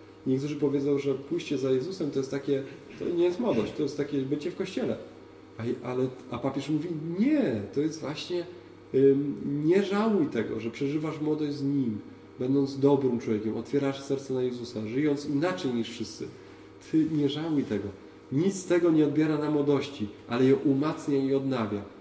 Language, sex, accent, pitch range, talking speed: Polish, male, native, 115-145 Hz, 170 wpm